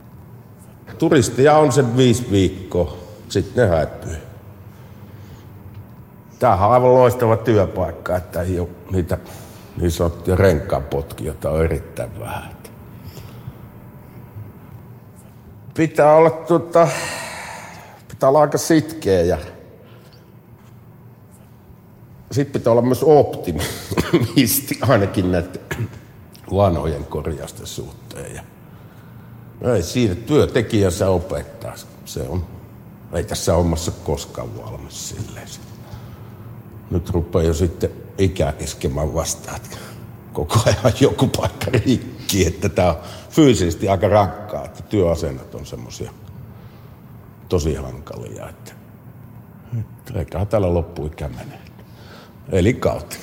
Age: 60-79